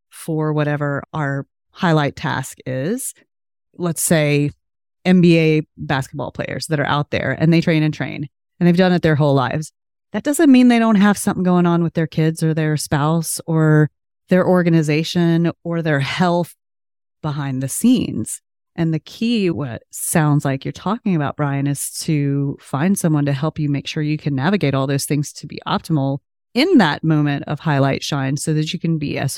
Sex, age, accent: female, 30-49, American